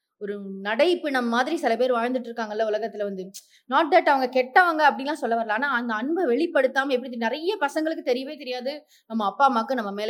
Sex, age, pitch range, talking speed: female, 20-39, 220-285 Hz, 200 wpm